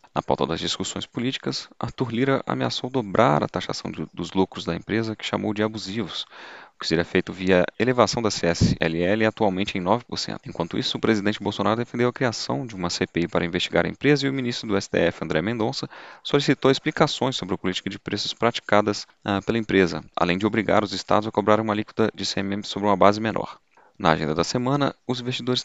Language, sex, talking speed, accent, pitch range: Portuguese, male, 195 wpm, Brazilian, 90-120 Hz